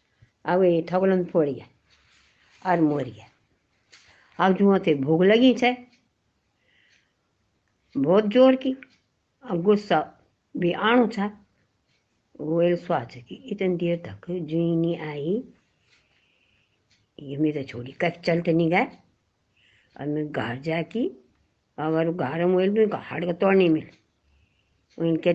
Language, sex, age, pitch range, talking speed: Hindi, female, 60-79, 140-210 Hz, 110 wpm